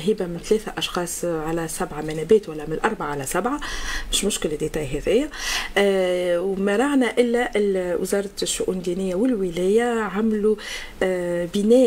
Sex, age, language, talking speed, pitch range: female, 40-59, Arabic, 115 wpm, 190-235 Hz